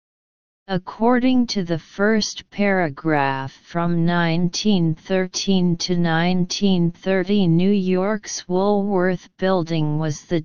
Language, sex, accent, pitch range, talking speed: English, female, American, 155-200 Hz, 85 wpm